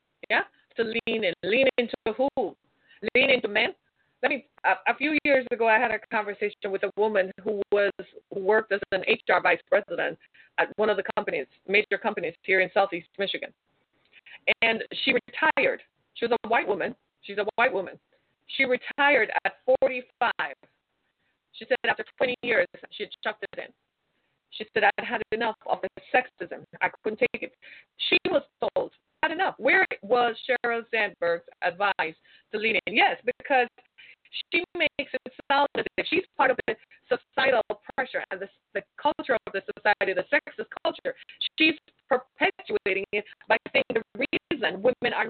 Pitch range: 215-290 Hz